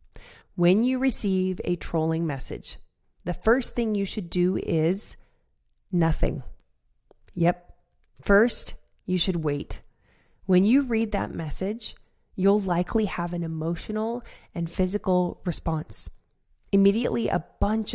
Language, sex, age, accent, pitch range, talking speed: English, female, 20-39, American, 170-215 Hz, 115 wpm